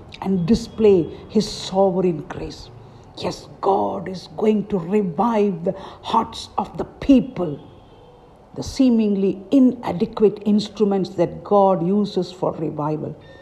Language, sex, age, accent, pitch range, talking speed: English, female, 50-69, Indian, 175-230 Hz, 110 wpm